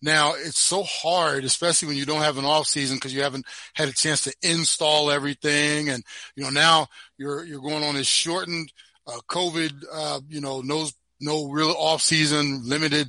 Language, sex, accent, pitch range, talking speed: English, male, American, 145-170 Hz, 195 wpm